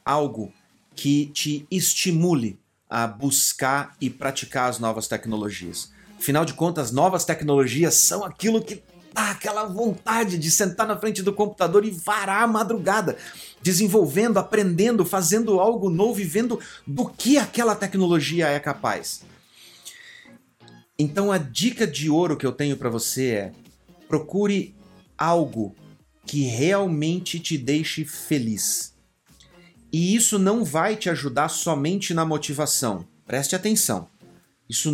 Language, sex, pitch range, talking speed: Portuguese, male, 135-195 Hz, 130 wpm